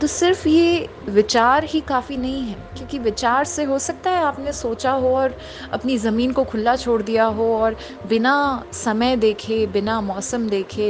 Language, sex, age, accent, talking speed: Hindi, female, 20-39, native, 175 wpm